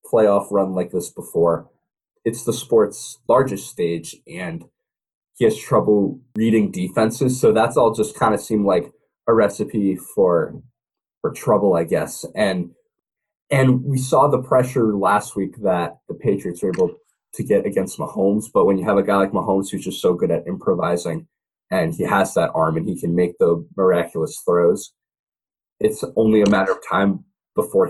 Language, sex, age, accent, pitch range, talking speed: English, male, 20-39, American, 100-135 Hz, 175 wpm